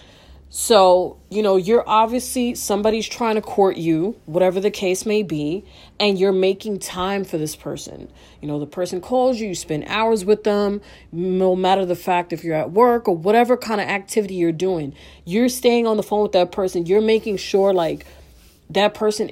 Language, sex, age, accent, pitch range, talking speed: English, female, 30-49, American, 175-225 Hz, 195 wpm